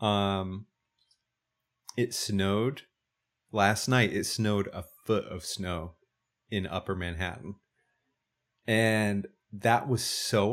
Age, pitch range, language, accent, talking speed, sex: 30-49, 100-125 Hz, English, American, 105 wpm, male